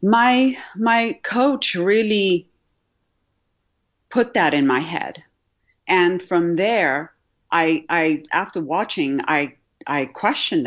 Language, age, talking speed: English, 40-59, 105 wpm